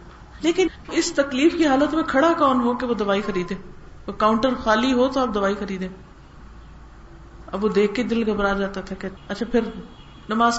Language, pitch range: Urdu, 210-280 Hz